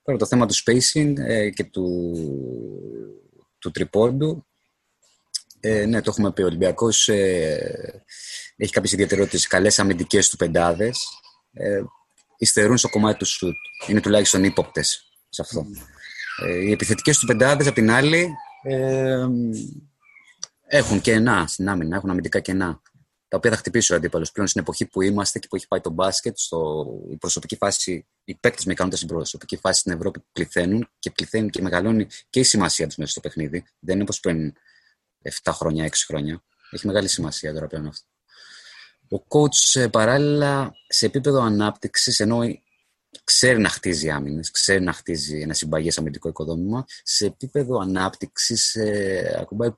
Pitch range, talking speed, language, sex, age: 85-120 Hz, 155 wpm, Greek, male, 20-39